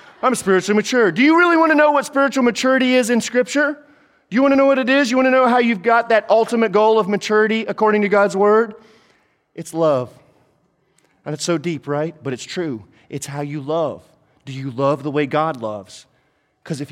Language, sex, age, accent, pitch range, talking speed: English, male, 30-49, American, 135-185 Hz, 220 wpm